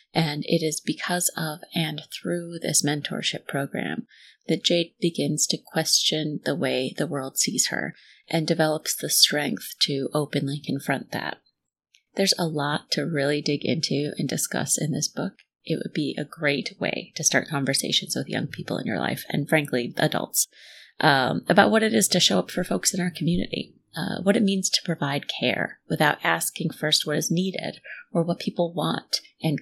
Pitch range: 150-190 Hz